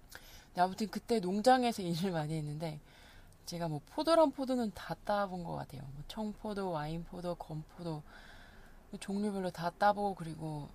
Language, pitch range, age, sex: Korean, 150-220 Hz, 20-39, female